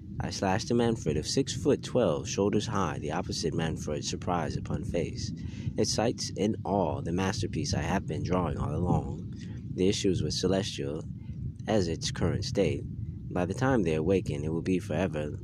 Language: English